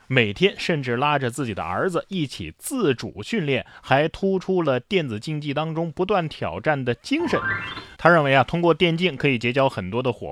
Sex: male